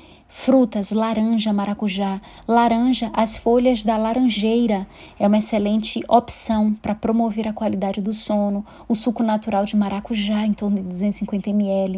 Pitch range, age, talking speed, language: 200-220 Hz, 20-39, 135 wpm, Portuguese